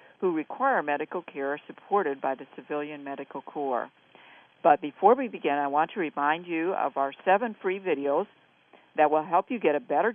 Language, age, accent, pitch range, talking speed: English, 50-69, American, 145-180 Hz, 185 wpm